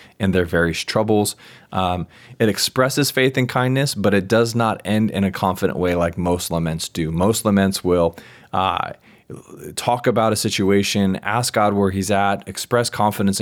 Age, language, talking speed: 20-39, English, 170 wpm